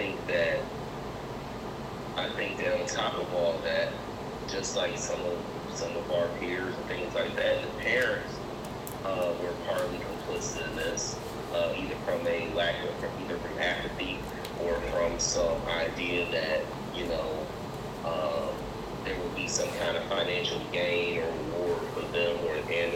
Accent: American